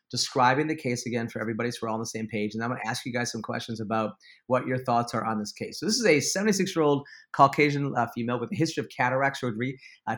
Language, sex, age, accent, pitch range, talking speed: English, male, 30-49, American, 115-140 Hz, 275 wpm